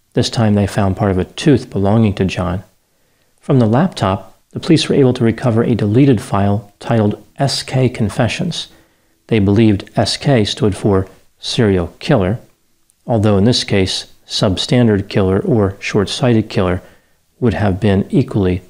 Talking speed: 150 wpm